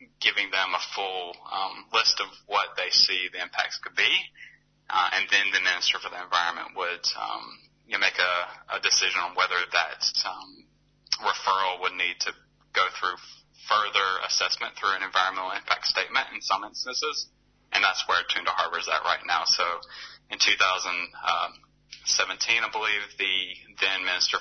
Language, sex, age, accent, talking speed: English, male, 20-39, American, 165 wpm